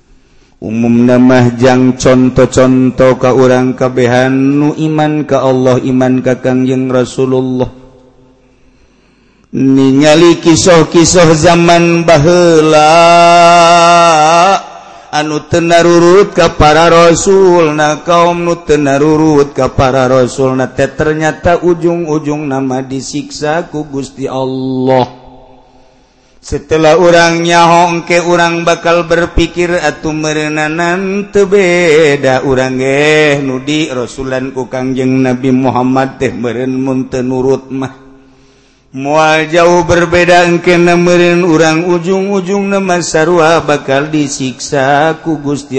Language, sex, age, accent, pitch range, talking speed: Indonesian, male, 50-69, native, 130-170 Hz, 95 wpm